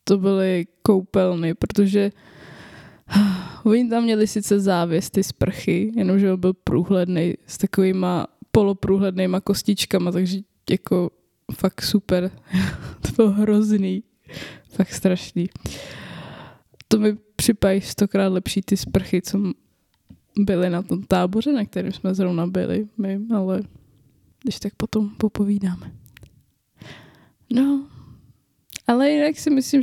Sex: female